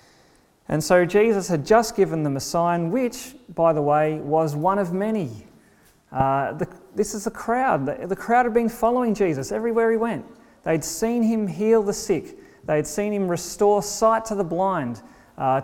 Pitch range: 160-225 Hz